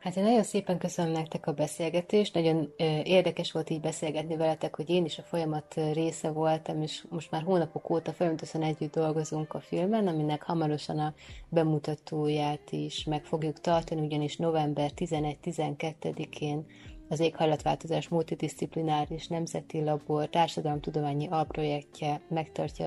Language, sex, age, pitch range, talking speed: Hungarian, female, 30-49, 150-165 Hz, 135 wpm